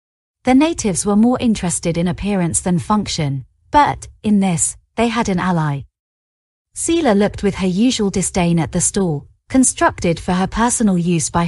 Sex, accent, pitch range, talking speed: female, British, 140-220 Hz, 160 wpm